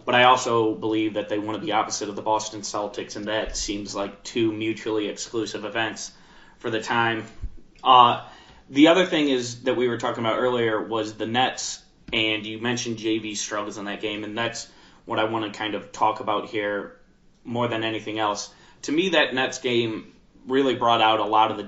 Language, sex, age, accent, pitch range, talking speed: English, male, 20-39, American, 105-120 Hz, 205 wpm